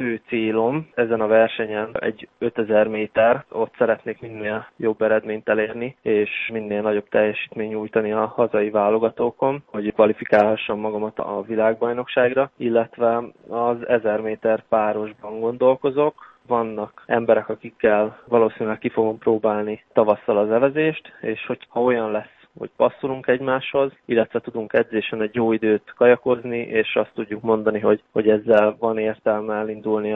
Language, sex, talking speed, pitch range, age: Hungarian, male, 135 wpm, 110-120 Hz, 20-39